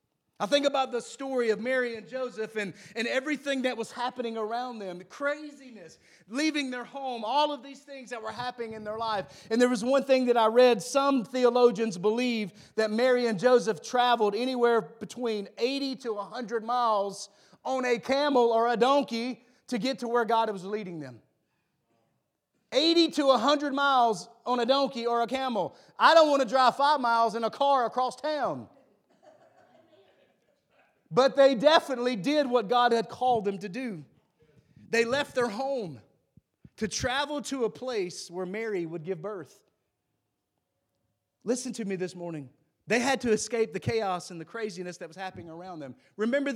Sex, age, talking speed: male, 40-59, 175 wpm